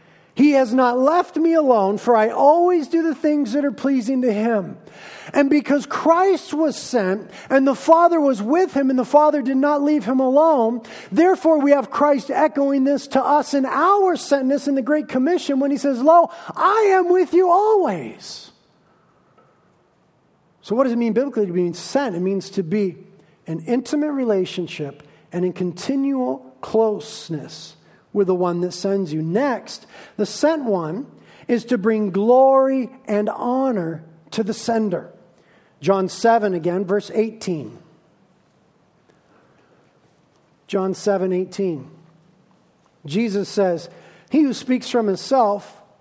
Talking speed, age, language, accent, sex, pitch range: 145 wpm, 40-59, English, American, male, 190-280 Hz